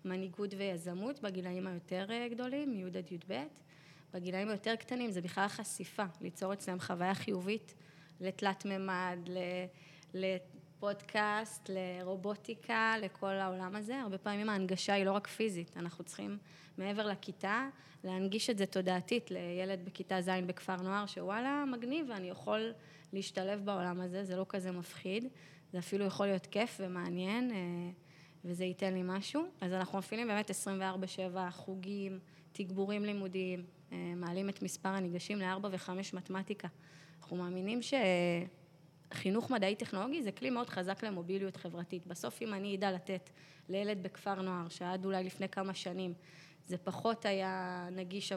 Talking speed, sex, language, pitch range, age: 135 wpm, female, Hebrew, 180-200 Hz, 20-39